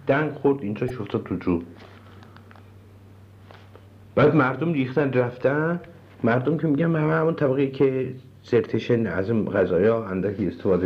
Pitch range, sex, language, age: 105-170 Hz, male, Persian, 50-69